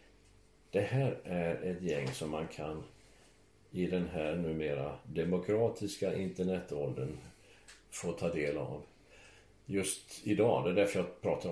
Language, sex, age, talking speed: Swedish, male, 50-69, 125 wpm